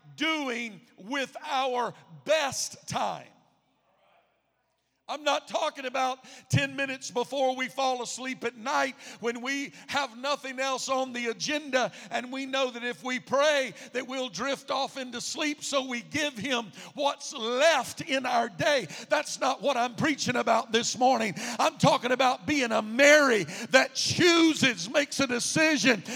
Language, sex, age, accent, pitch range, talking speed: English, male, 50-69, American, 220-275 Hz, 150 wpm